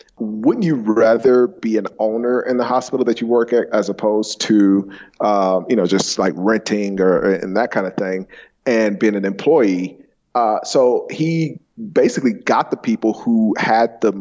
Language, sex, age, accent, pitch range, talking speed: English, male, 40-59, American, 105-125 Hz, 175 wpm